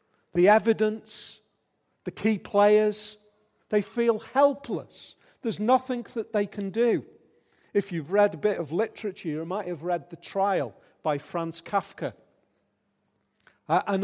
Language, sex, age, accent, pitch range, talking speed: English, male, 40-59, British, 160-210 Hz, 135 wpm